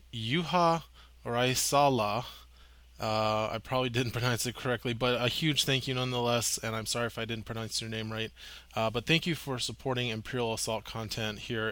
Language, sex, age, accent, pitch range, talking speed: English, male, 20-39, American, 110-130 Hz, 175 wpm